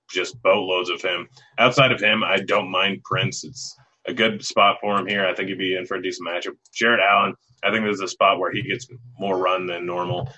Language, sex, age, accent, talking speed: English, male, 30-49, American, 235 wpm